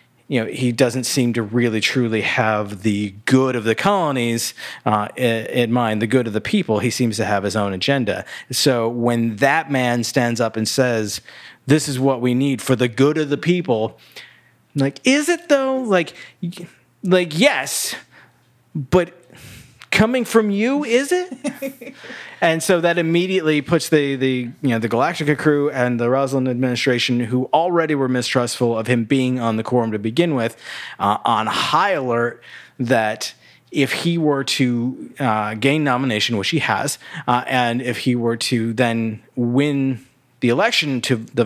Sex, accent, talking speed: male, American, 170 wpm